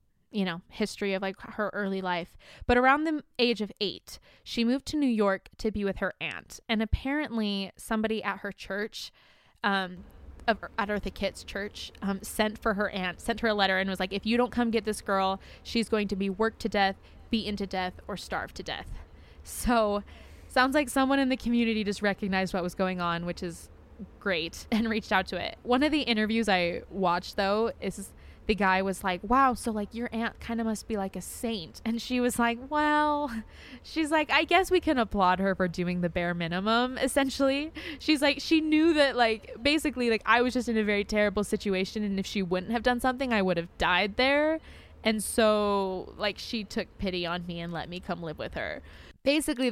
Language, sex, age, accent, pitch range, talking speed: English, female, 20-39, American, 195-240 Hz, 210 wpm